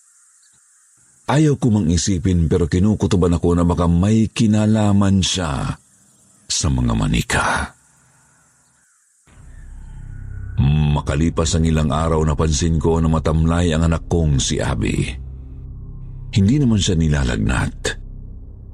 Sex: male